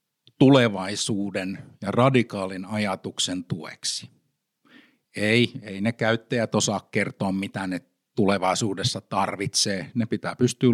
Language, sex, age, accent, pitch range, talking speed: Finnish, male, 50-69, native, 100-125 Hz, 100 wpm